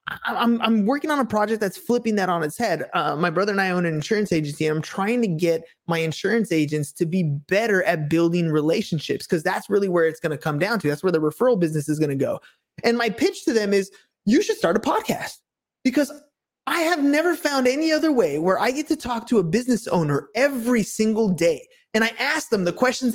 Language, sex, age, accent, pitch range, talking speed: English, male, 20-39, American, 190-270 Hz, 235 wpm